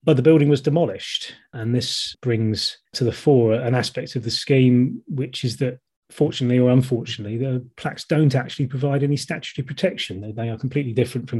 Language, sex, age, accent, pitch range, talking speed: English, male, 30-49, British, 110-130 Hz, 190 wpm